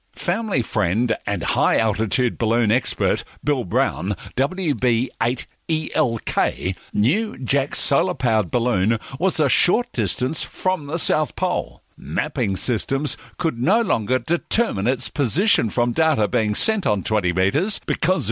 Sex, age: male, 50-69